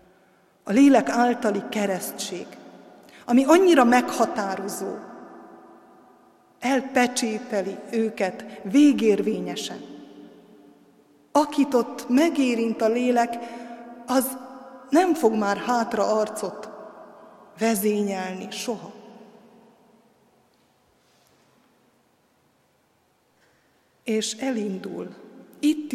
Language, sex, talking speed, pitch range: Hungarian, female, 60 wpm, 200-245 Hz